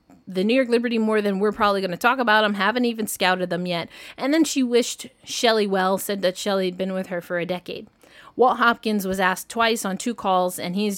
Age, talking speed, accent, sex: 20-39, 240 wpm, American, female